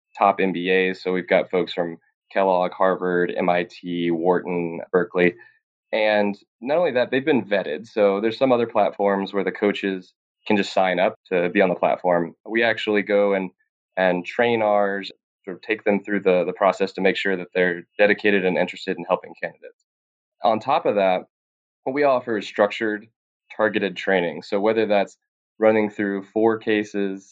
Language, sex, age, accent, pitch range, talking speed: English, male, 20-39, American, 90-110 Hz, 175 wpm